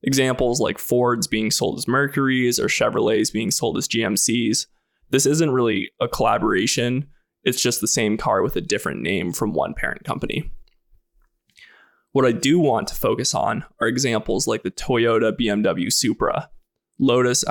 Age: 20-39